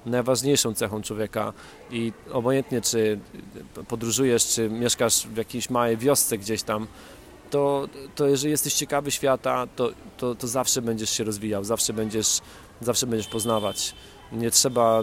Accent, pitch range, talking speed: native, 110-130 Hz, 135 wpm